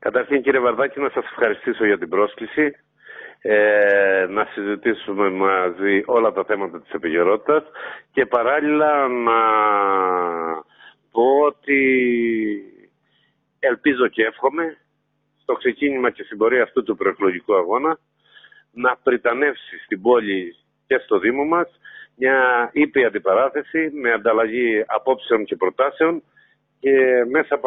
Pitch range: 115-165 Hz